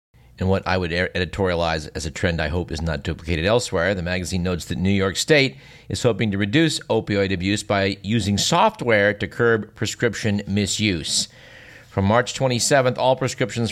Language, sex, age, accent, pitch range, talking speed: English, male, 50-69, American, 95-120 Hz, 170 wpm